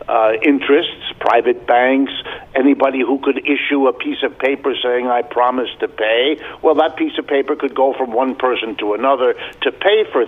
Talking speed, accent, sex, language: 185 wpm, American, male, English